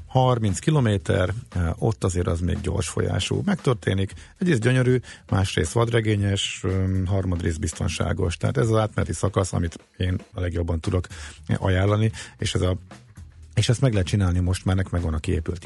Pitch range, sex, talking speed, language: 85-110 Hz, male, 155 wpm, Hungarian